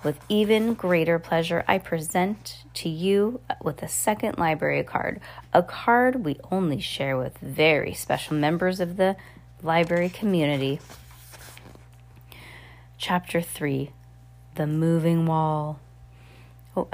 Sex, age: female, 30-49